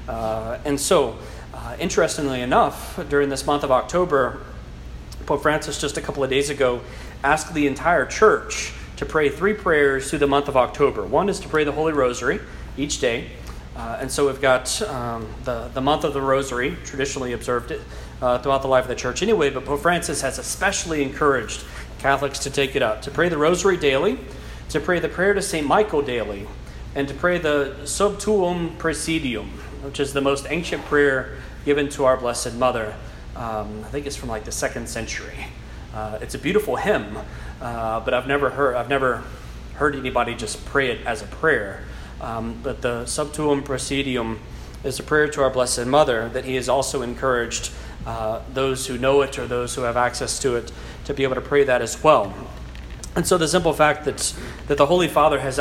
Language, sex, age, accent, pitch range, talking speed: English, male, 40-59, American, 120-145 Hz, 195 wpm